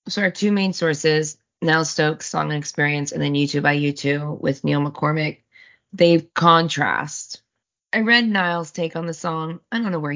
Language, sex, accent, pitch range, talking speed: English, female, American, 140-180 Hz, 185 wpm